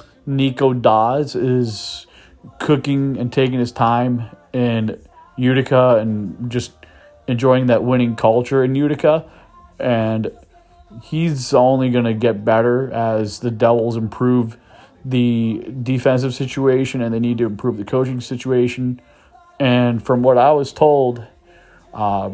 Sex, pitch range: male, 110-130 Hz